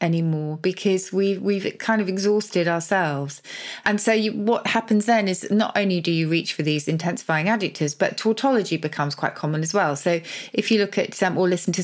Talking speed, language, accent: 195 wpm, English, British